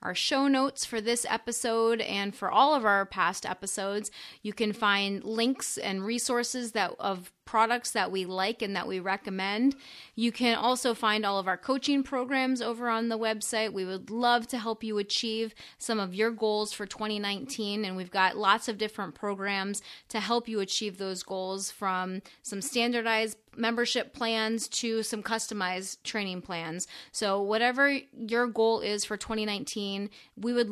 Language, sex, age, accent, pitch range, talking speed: English, female, 30-49, American, 195-235 Hz, 170 wpm